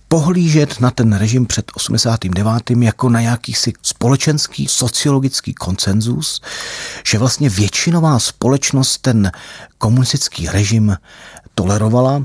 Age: 40-59